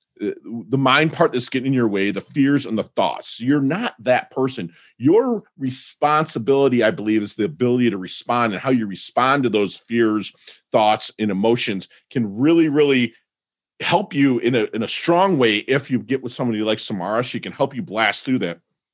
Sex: male